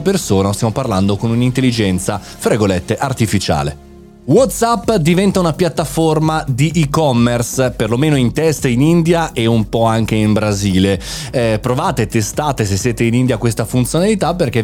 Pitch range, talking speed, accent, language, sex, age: 105-150 Hz, 140 wpm, native, Italian, male, 30-49